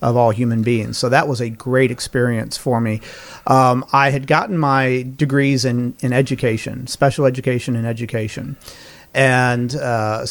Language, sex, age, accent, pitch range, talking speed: English, male, 40-59, American, 125-145 Hz, 155 wpm